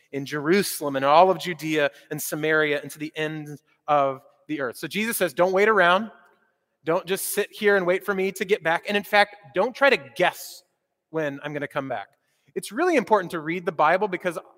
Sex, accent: male, American